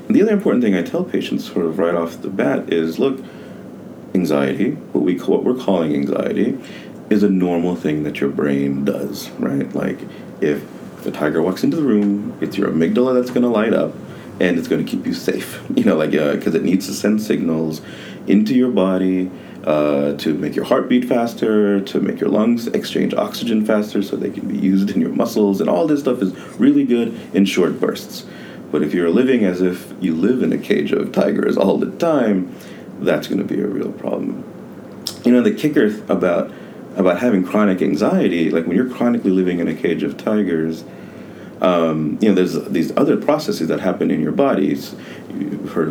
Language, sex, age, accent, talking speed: English, male, 30-49, American, 205 wpm